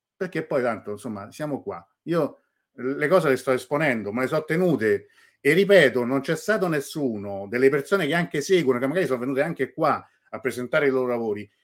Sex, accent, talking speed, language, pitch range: male, native, 195 wpm, Italian, 110-145 Hz